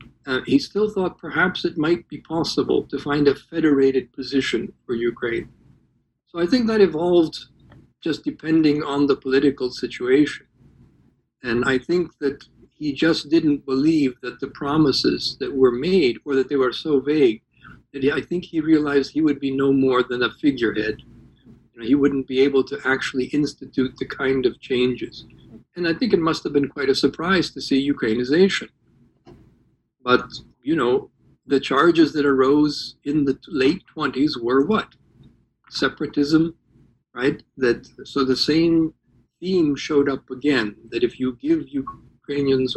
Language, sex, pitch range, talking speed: English, male, 125-160 Hz, 155 wpm